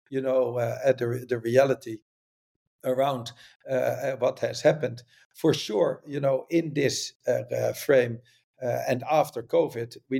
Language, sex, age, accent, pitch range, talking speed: English, male, 50-69, Dutch, 120-145 Hz, 145 wpm